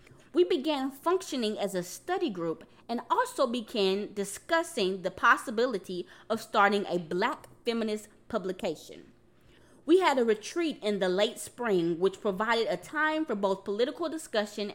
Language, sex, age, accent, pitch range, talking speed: English, female, 20-39, American, 195-280 Hz, 140 wpm